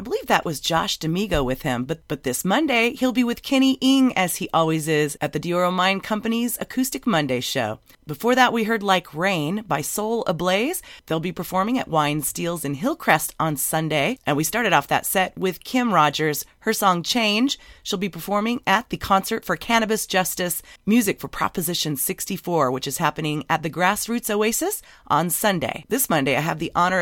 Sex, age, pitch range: female, 30-49, 160-220 Hz